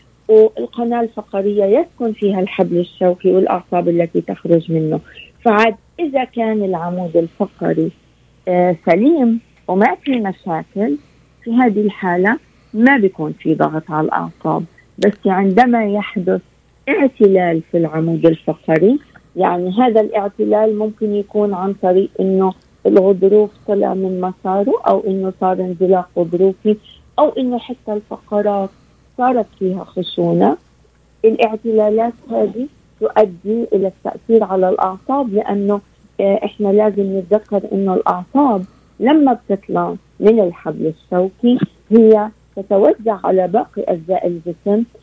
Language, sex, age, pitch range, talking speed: Arabic, female, 40-59, 185-220 Hz, 110 wpm